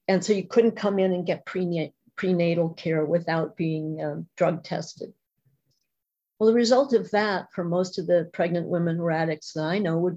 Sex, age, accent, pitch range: female, 50-69, American, 170-200 Hz